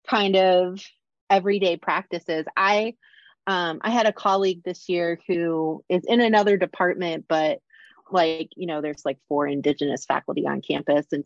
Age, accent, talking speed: 30-49, American, 155 wpm